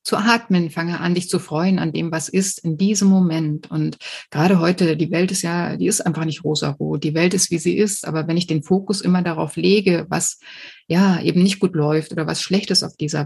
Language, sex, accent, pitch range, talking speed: German, female, German, 165-195 Hz, 235 wpm